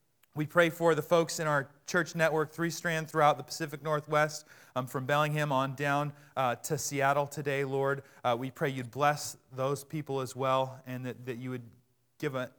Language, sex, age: English, male, 30-49